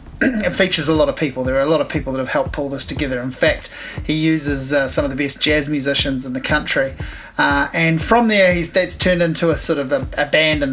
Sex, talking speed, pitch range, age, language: male, 265 wpm, 140-175 Hz, 30-49, English